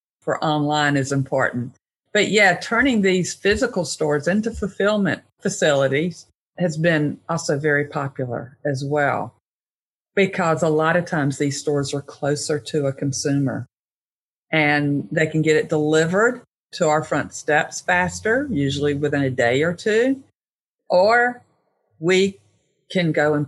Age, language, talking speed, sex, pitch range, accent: 50-69, English, 140 wpm, female, 145-175 Hz, American